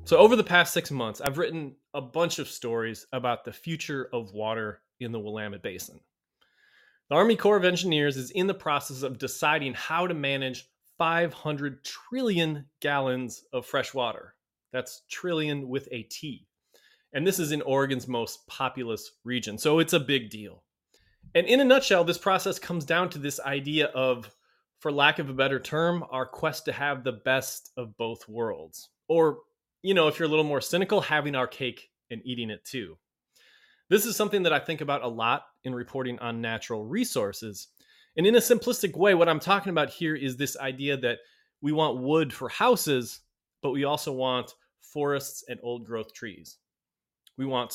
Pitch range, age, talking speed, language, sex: 120-165 Hz, 20-39, 185 wpm, English, male